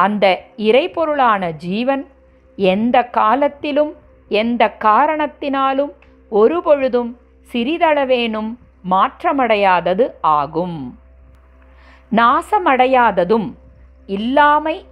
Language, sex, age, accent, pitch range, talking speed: Tamil, female, 50-69, native, 170-275 Hz, 55 wpm